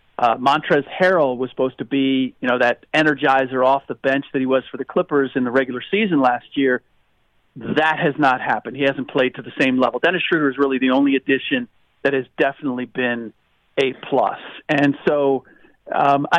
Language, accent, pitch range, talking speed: English, American, 130-160 Hz, 195 wpm